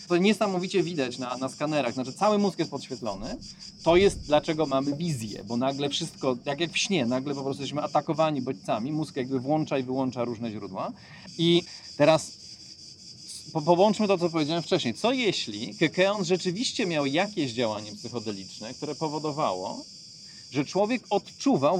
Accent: native